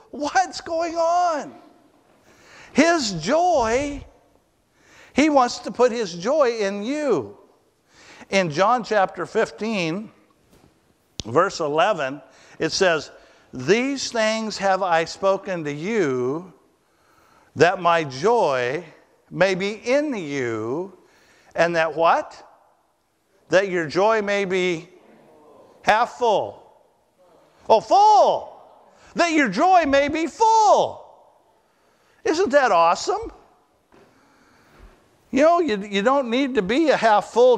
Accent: American